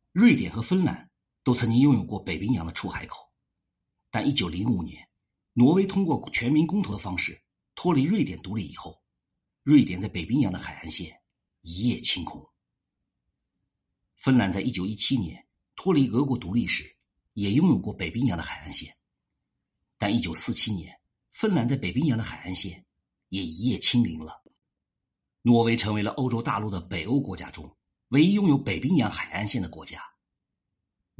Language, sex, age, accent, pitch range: Chinese, male, 50-69, native, 90-135 Hz